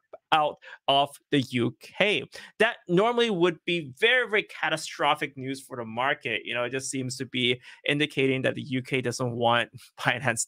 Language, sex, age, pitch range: English, male, 20-39, 130-205 Hz